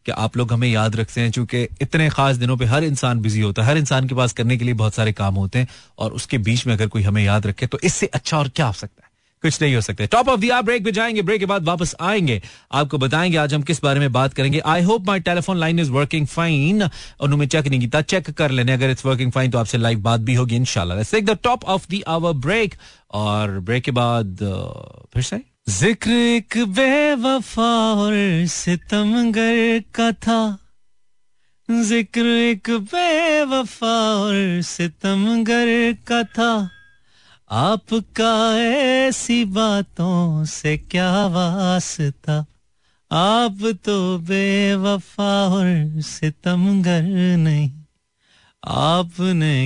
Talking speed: 160 wpm